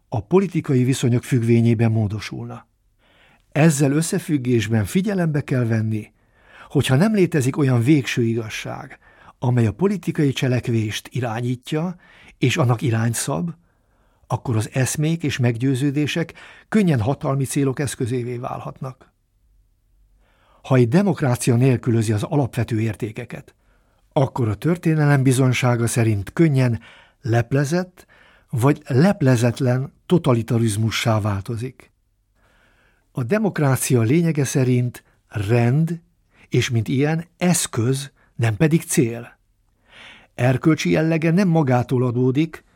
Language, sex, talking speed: Hungarian, male, 100 wpm